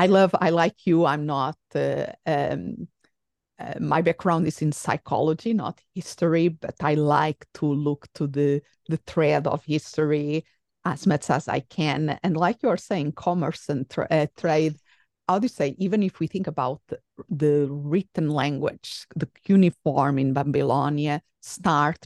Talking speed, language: 165 wpm, English